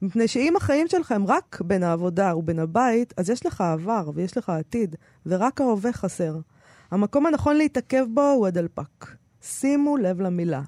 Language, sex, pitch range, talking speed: Hebrew, female, 180-250 Hz, 155 wpm